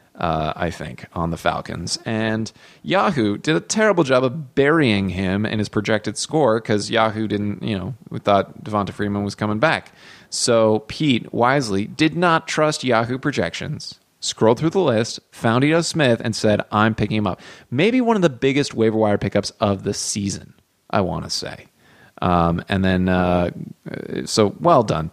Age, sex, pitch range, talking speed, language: 30-49, male, 105-130 Hz, 175 wpm, English